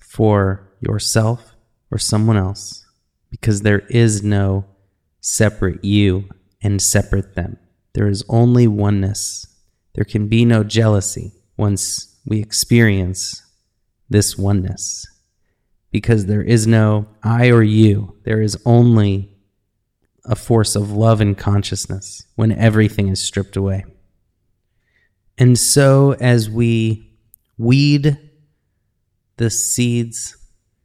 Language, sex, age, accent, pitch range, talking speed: English, male, 30-49, American, 95-115 Hz, 110 wpm